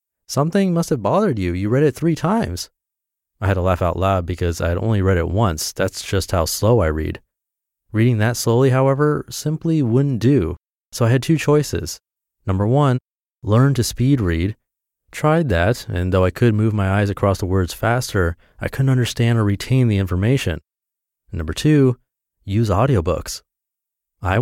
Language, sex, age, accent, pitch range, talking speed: English, male, 30-49, American, 95-130 Hz, 175 wpm